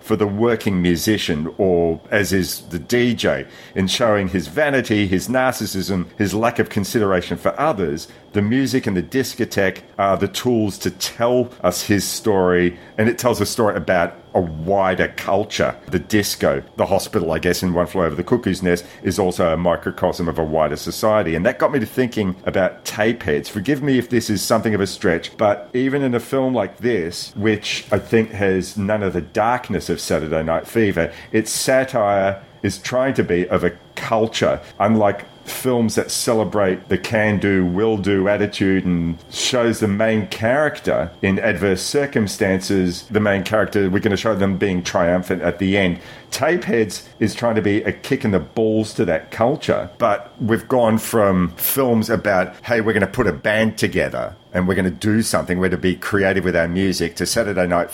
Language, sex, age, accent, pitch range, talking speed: English, male, 40-59, Australian, 90-115 Hz, 190 wpm